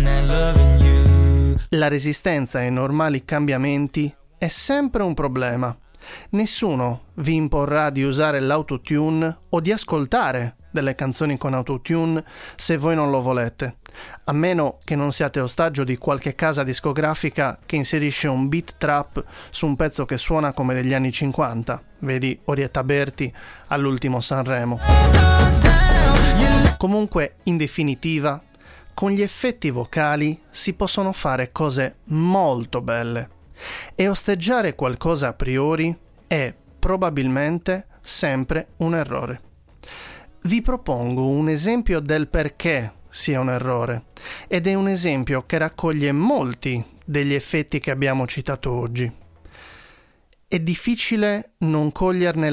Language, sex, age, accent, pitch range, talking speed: Italian, male, 30-49, native, 130-165 Hz, 120 wpm